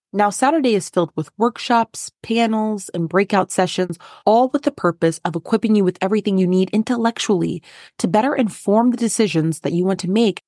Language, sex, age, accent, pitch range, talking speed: English, female, 20-39, American, 175-220 Hz, 185 wpm